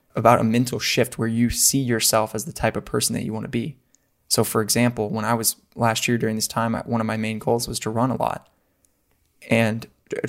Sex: male